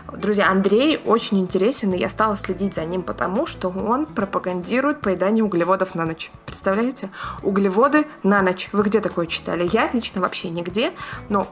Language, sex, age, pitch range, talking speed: Russian, female, 20-39, 180-220 Hz, 160 wpm